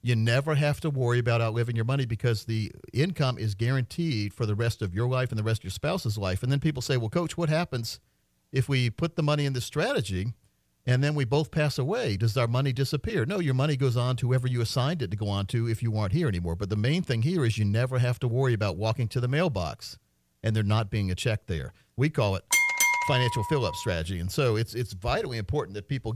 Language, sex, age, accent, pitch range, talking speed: English, male, 50-69, American, 110-145 Hz, 250 wpm